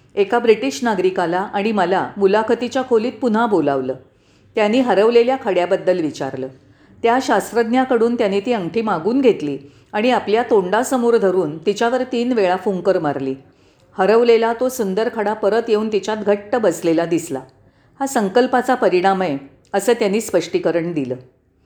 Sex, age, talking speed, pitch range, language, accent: female, 40-59, 130 wpm, 185-240 Hz, Marathi, native